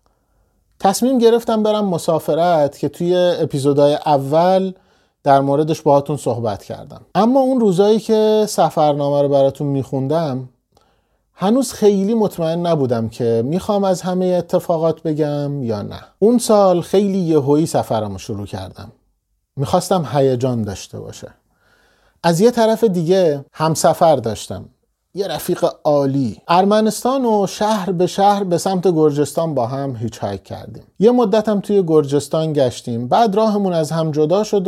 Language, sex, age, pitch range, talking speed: Persian, male, 30-49, 135-195 Hz, 135 wpm